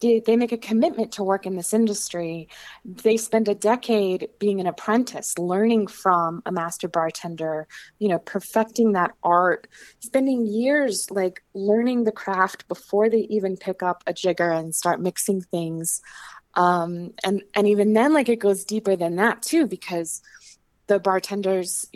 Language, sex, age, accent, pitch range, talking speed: English, female, 20-39, American, 175-210 Hz, 160 wpm